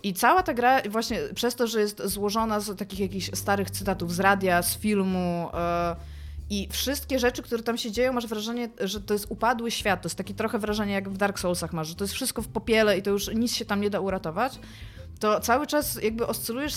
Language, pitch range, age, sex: Polish, 185-230 Hz, 20-39, female